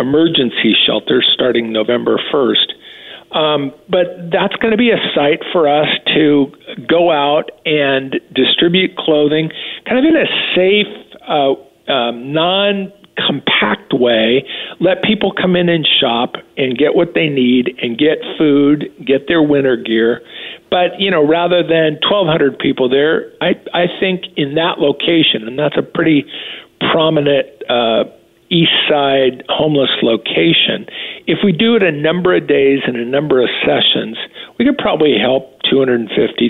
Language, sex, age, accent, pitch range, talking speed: English, male, 50-69, American, 130-170 Hz, 150 wpm